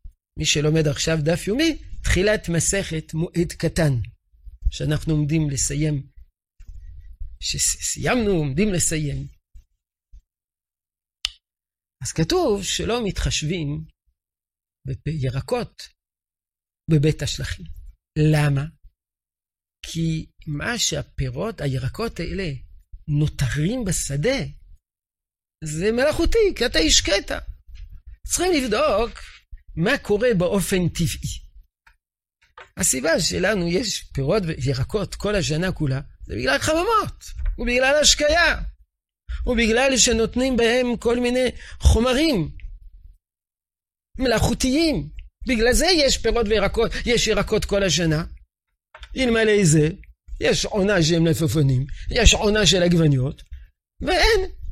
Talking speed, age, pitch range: 90 wpm, 50-69, 130-220 Hz